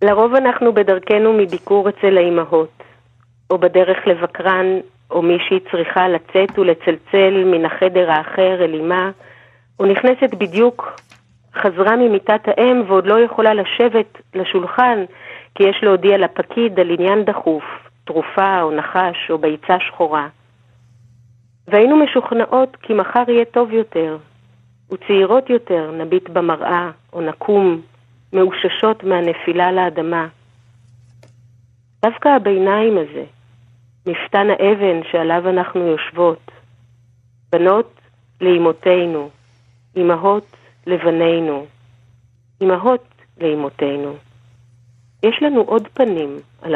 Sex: female